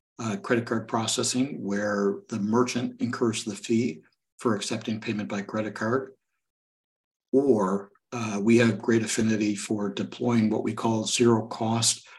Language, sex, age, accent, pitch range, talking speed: English, male, 60-79, American, 105-120 Hz, 140 wpm